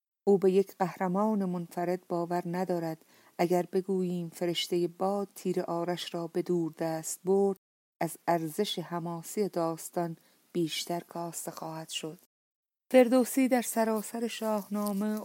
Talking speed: 120 wpm